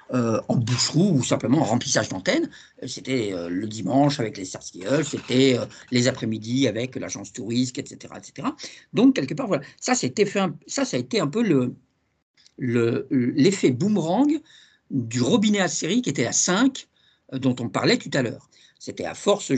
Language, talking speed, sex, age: French, 185 wpm, male, 50-69